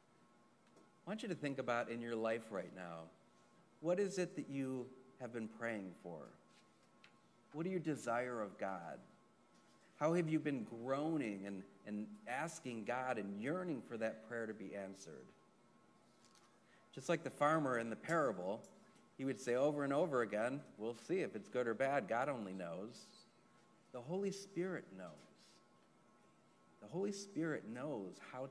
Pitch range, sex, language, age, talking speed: 110-145 Hz, male, English, 40-59, 160 wpm